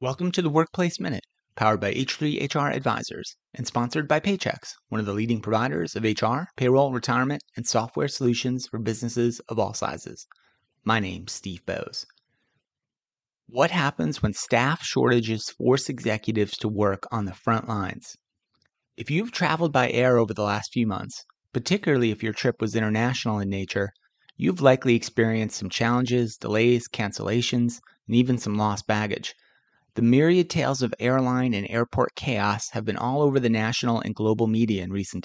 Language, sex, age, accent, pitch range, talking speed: English, male, 30-49, American, 105-130 Hz, 165 wpm